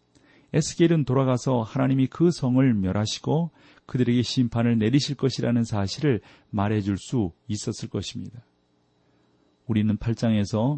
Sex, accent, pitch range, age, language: male, native, 100-135 Hz, 40-59, Korean